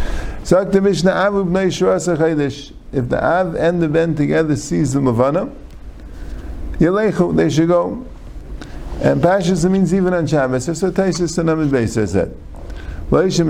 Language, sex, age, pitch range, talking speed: English, male, 50-69, 100-165 Hz, 105 wpm